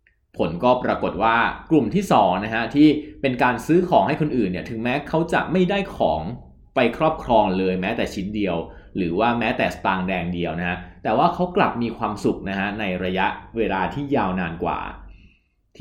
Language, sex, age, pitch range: Thai, male, 20-39, 100-145 Hz